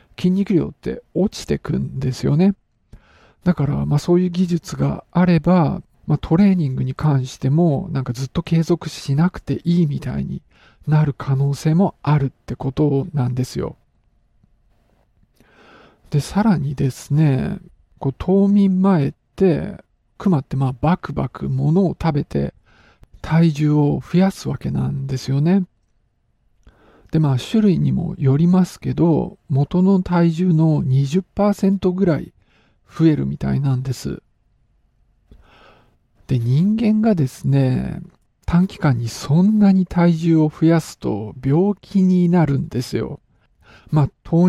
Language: Japanese